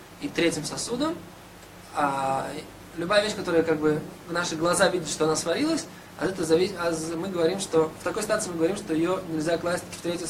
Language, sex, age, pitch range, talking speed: Russian, male, 20-39, 155-195 Hz, 200 wpm